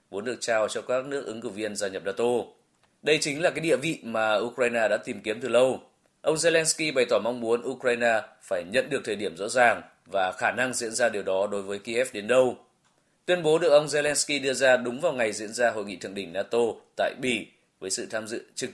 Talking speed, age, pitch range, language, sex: 240 wpm, 20-39, 105-130 Hz, Vietnamese, male